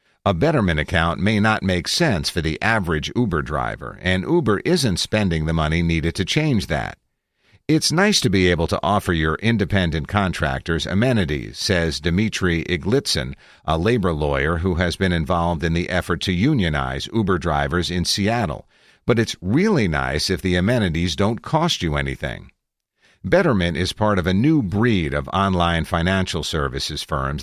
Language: English